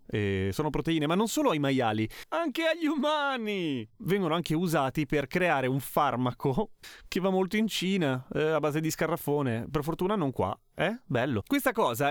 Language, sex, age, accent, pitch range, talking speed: Italian, male, 30-49, native, 125-175 Hz, 180 wpm